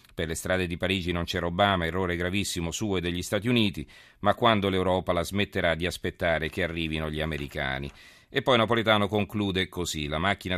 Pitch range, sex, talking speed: 80-100 Hz, male, 185 wpm